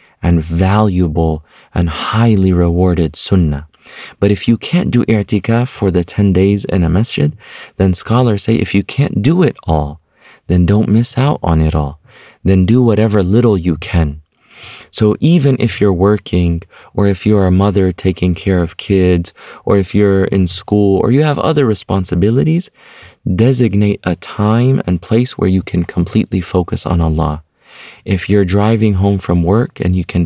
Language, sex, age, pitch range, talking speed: English, male, 30-49, 90-105 Hz, 170 wpm